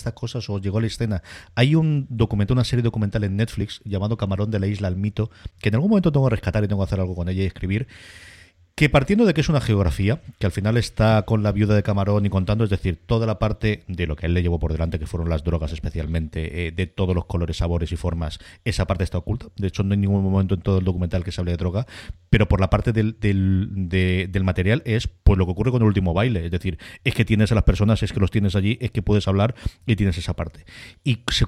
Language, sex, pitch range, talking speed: Spanish, male, 95-115 Hz, 270 wpm